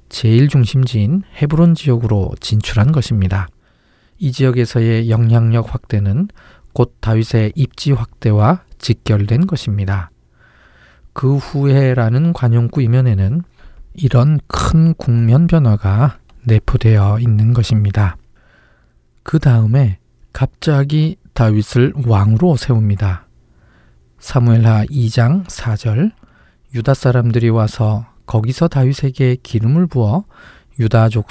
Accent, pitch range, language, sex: native, 105-135 Hz, Korean, male